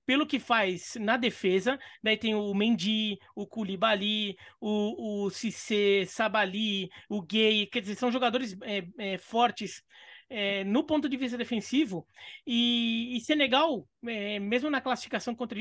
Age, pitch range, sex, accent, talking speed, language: 20-39, 220-295 Hz, male, Brazilian, 145 wpm, Portuguese